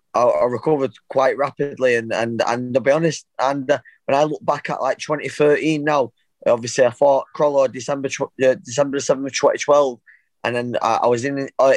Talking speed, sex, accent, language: 200 wpm, male, British, English